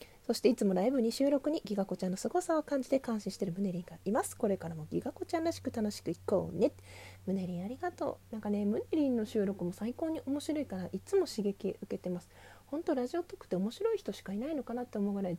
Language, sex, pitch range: Japanese, female, 185-285 Hz